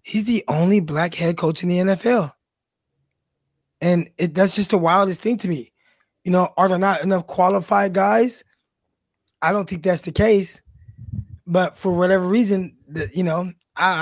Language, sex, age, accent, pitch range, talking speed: English, male, 20-39, American, 165-195 Hz, 165 wpm